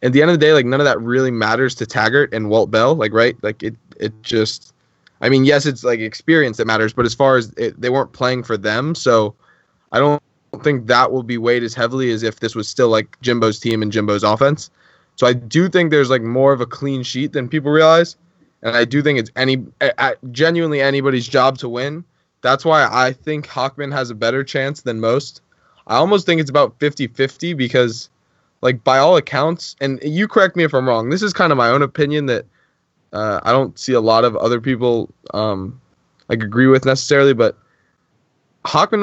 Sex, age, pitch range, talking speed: male, 10-29, 120-150 Hz, 215 wpm